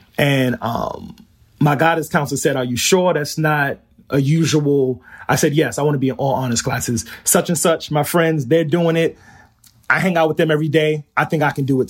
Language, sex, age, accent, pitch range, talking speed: English, male, 30-49, American, 130-160 Hz, 225 wpm